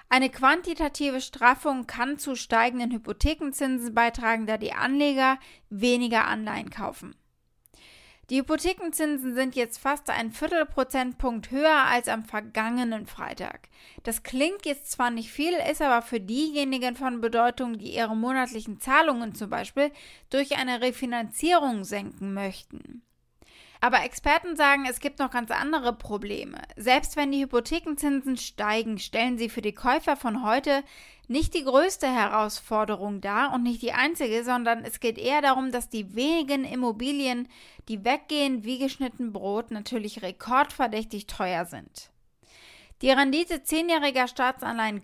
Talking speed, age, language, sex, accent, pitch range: 135 wpm, 20-39, German, female, German, 230-280 Hz